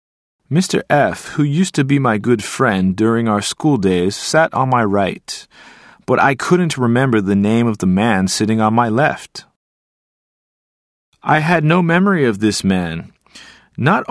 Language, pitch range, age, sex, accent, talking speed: English, 110-165 Hz, 30-49, male, American, 160 wpm